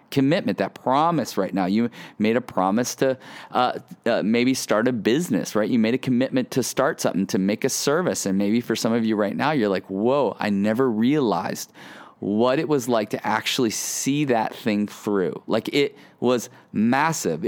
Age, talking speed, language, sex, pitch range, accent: 30-49, 190 wpm, English, male, 115-160 Hz, American